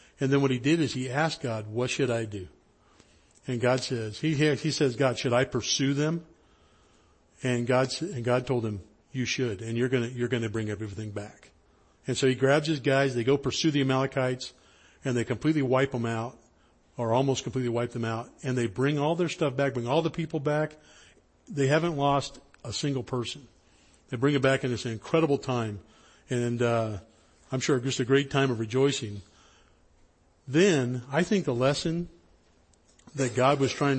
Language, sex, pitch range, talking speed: English, male, 100-135 Hz, 195 wpm